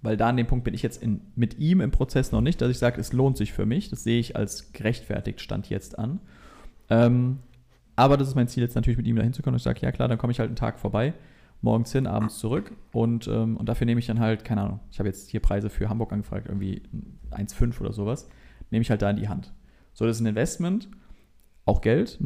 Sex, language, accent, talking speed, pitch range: male, German, German, 250 wpm, 105-130 Hz